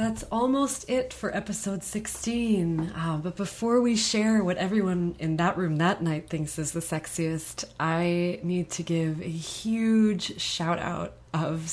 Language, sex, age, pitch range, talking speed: English, female, 20-39, 155-200 Hz, 150 wpm